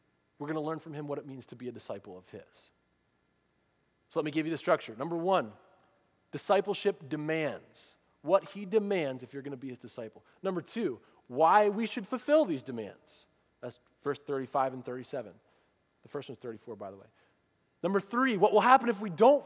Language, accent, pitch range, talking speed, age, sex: English, American, 135-195 Hz, 195 wpm, 30-49, male